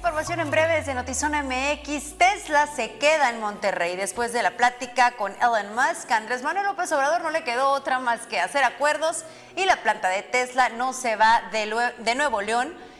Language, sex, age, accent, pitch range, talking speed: Spanish, female, 30-49, Mexican, 210-290 Hz, 190 wpm